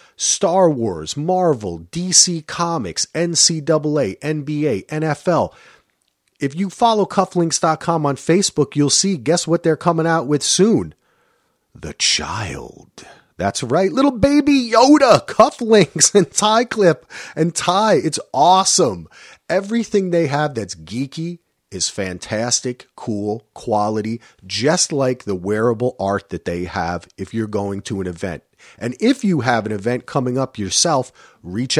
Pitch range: 110-170 Hz